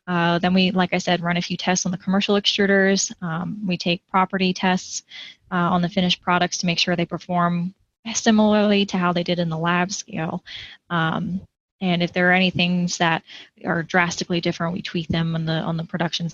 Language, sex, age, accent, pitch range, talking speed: English, female, 20-39, American, 170-195 Hz, 205 wpm